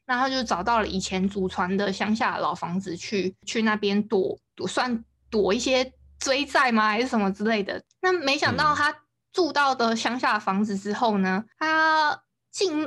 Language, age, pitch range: Chinese, 20-39, 200-245 Hz